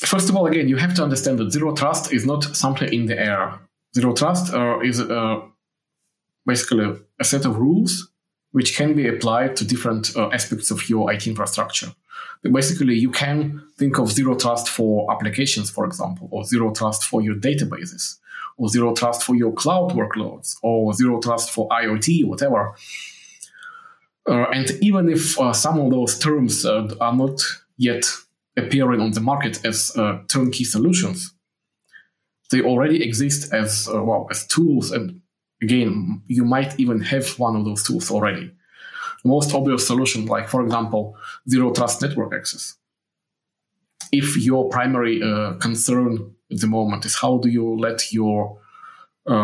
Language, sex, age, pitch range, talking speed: English, male, 20-39, 115-140 Hz, 165 wpm